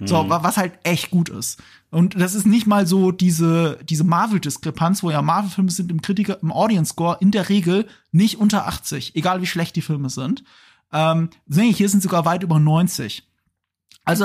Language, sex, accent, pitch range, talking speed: German, male, German, 155-205 Hz, 180 wpm